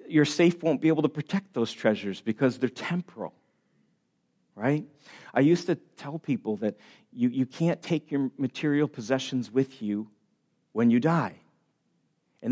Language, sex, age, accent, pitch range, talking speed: English, male, 40-59, American, 135-190 Hz, 155 wpm